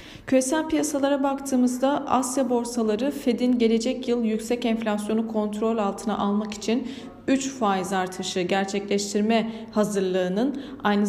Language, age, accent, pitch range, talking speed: Turkish, 40-59, native, 195-245 Hz, 110 wpm